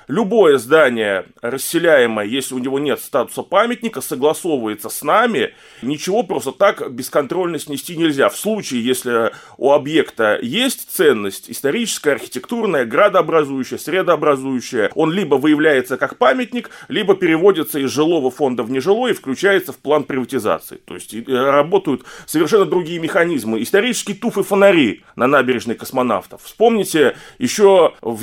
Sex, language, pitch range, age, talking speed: male, Russian, 135-215 Hz, 30-49, 130 wpm